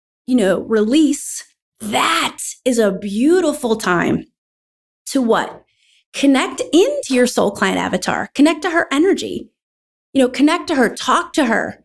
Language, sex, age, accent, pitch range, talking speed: English, female, 30-49, American, 215-295 Hz, 140 wpm